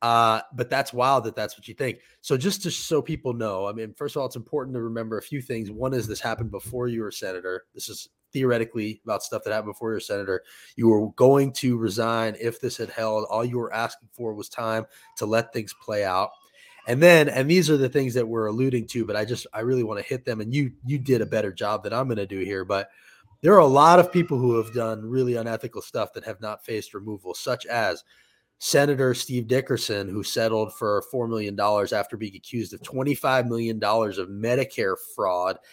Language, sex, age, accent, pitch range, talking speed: English, male, 30-49, American, 110-130 Hz, 230 wpm